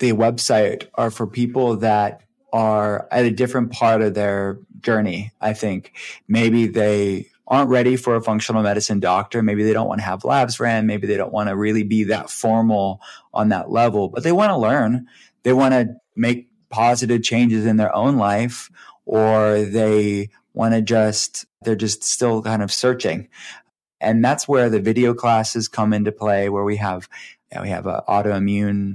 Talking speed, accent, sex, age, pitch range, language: 180 wpm, American, male, 20-39, 100-115 Hz, English